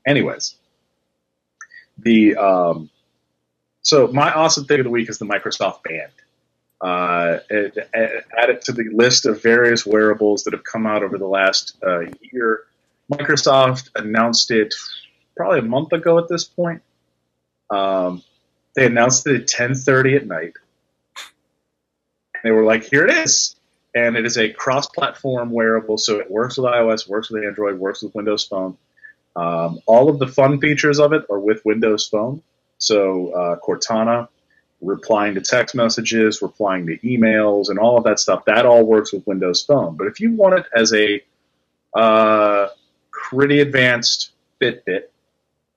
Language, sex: English, male